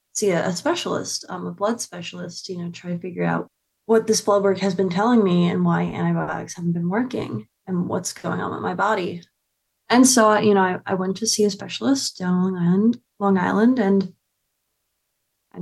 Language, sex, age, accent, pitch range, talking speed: English, female, 20-39, American, 180-205 Hz, 200 wpm